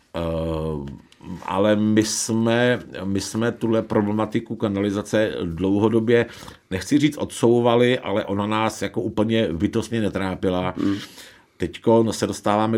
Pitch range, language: 90-110 Hz, Czech